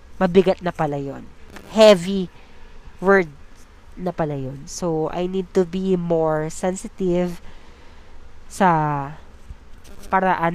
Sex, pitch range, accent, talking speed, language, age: female, 140-195 Hz, native, 100 wpm, Filipino, 20-39